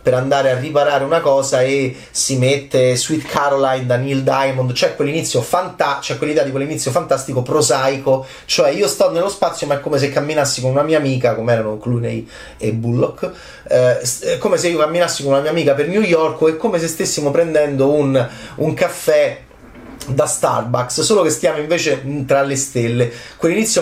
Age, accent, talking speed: 30-49, native, 190 wpm